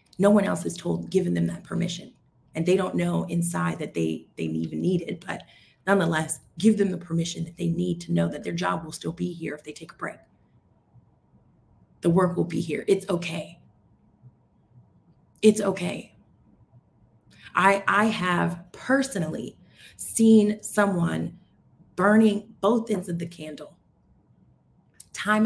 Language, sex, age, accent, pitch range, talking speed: English, female, 30-49, American, 165-205 Hz, 155 wpm